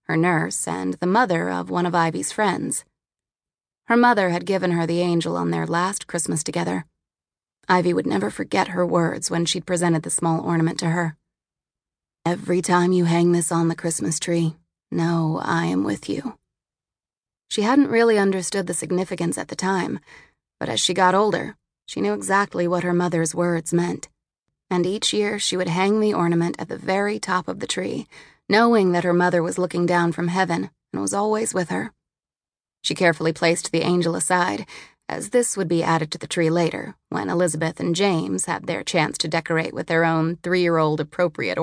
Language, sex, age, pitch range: English, female, 20-39, 160-185 Hz